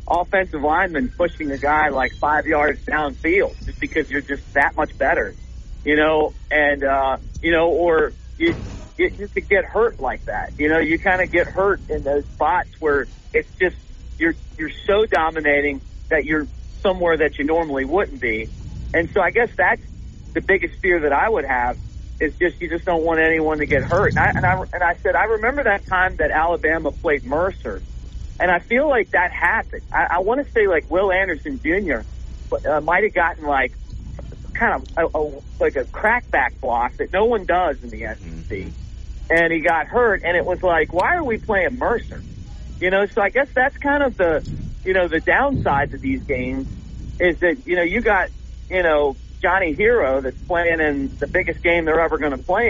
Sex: male